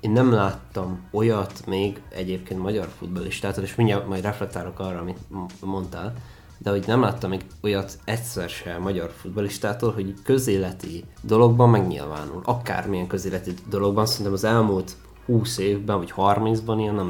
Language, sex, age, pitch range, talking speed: Hungarian, male, 20-39, 95-110 Hz, 145 wpm